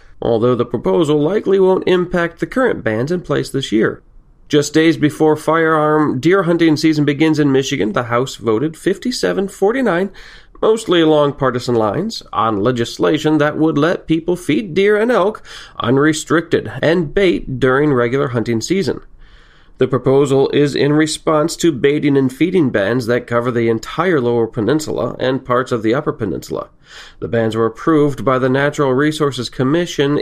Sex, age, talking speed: male, 40-59, 155 wpm